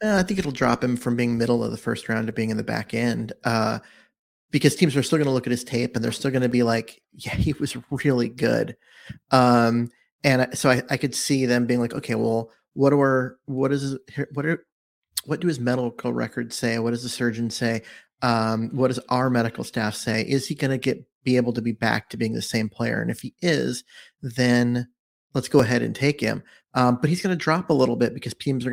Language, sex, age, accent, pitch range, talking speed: English, male, 30-49, American, 115-135 Hz, 240 wpm